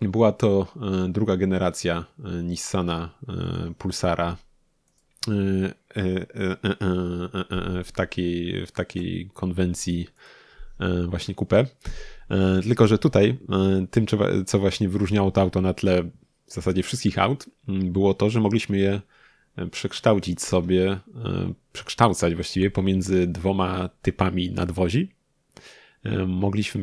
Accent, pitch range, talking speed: native, 90-105 Hz, 90 wpm